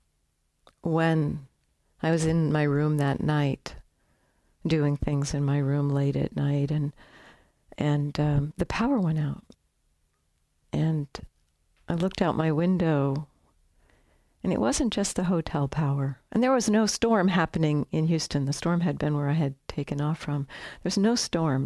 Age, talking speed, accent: 60-79, 160 wpm, American